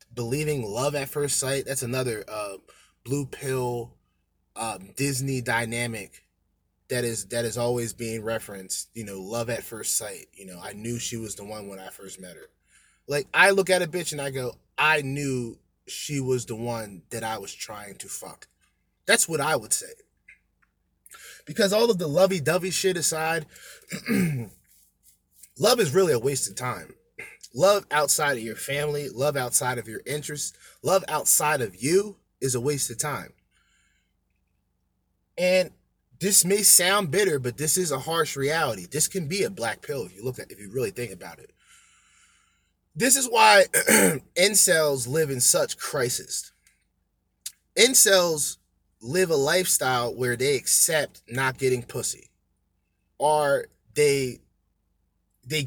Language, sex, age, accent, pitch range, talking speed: English, male, 20-39, American, 115-160 Hz, 160 wpm